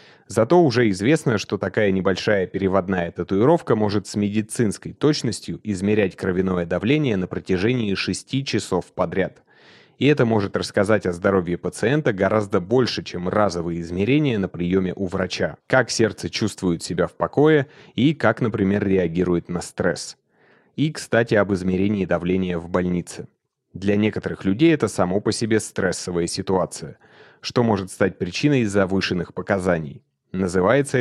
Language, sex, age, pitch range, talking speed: Russian, male, 30-49, 95-125 Hz, 135 wpm